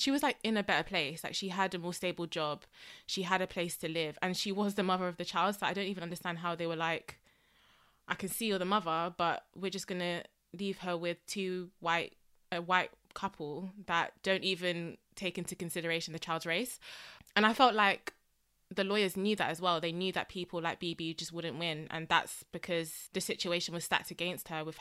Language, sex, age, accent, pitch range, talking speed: English, female, 20-39, British, 165-190 Hz, 225 wpm